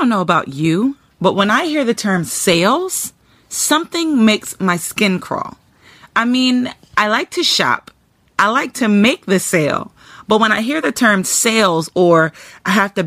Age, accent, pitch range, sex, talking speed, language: 30-49, American, 190-255 Hz, female, 185 wpm, English